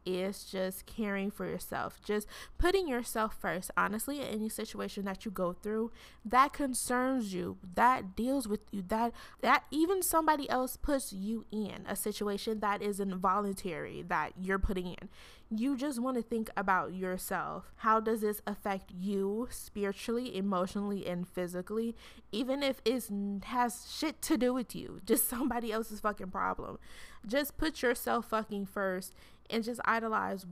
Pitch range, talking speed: 200-245 Hz, 155 wpm